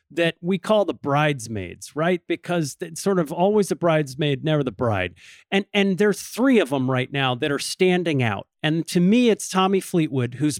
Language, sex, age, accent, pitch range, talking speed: English, male, 40-59, American, 140-190 Hz, 200 wpm